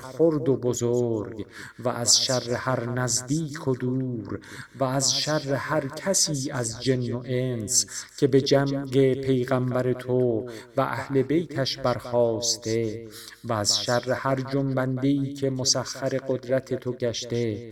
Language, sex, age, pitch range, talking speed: Persian, male, 50-69, 120-135 Hz, 130 wpm